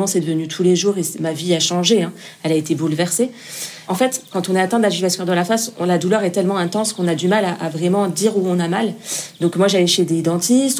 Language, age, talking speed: French, 30-49, 285 wpm